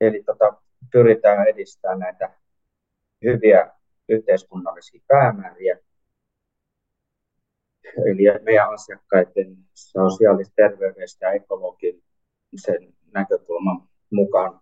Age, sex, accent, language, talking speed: 30-49, male, native, Finnish, 70 wpm